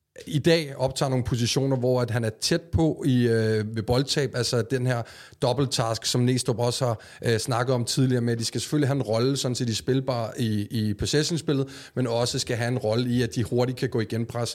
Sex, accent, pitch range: male, native, 115-130 Hz